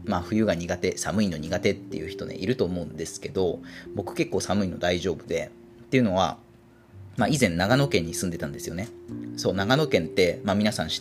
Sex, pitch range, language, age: male, 90-115 Hz, Japanese, 30-49